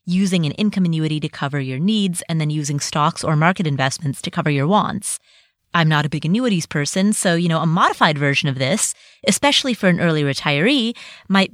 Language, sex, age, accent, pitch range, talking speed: English, female, 30-49, American, 160-205 Hz, 205 wpm